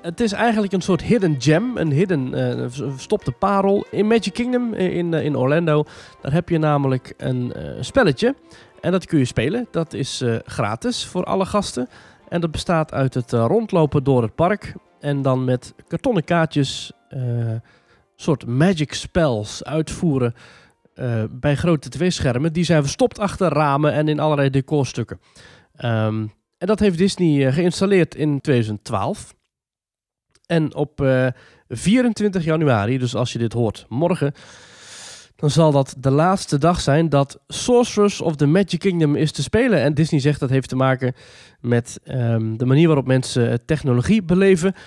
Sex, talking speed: male, 165 wpm